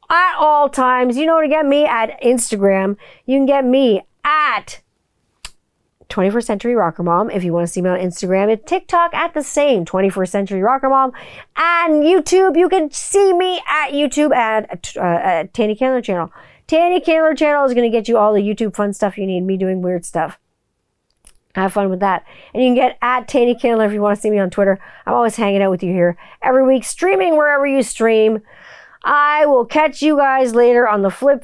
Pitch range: 200-280 Hz